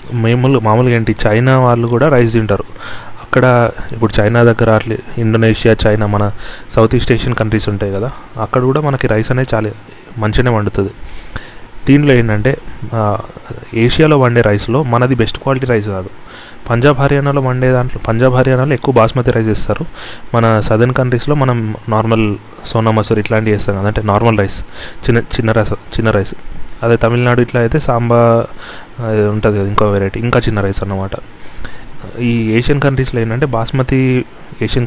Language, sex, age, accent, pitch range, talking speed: Telugu, male, 30-49, native, 110-125 Hz, 145 wpm